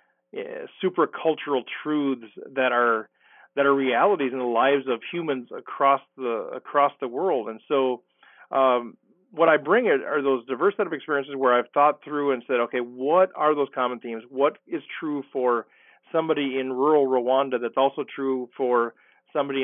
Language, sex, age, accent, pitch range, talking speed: English, male, 40-59, American, 125-150 Hz, 170 wpm